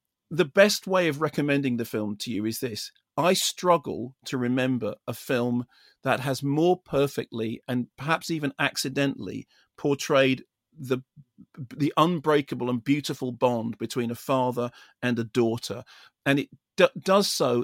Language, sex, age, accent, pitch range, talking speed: English, male, 40-59, British, 125-155 Hz, 145 wpm